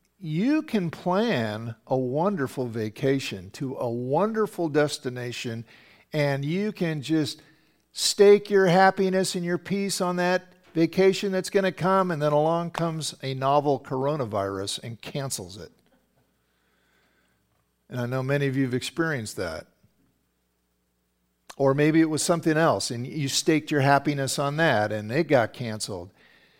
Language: English